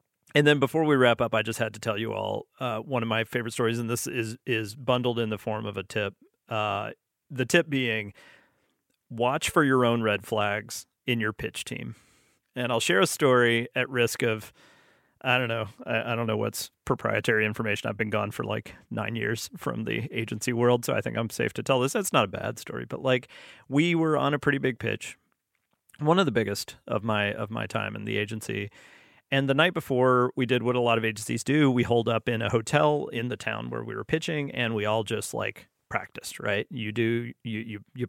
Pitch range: 110-130 Hz